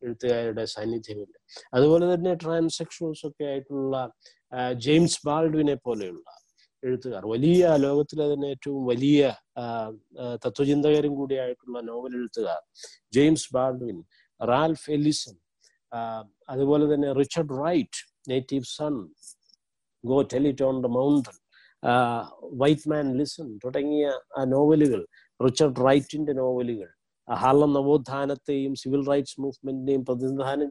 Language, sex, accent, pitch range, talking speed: Malayalam, male, native, 125-150 Hz, 85 wpm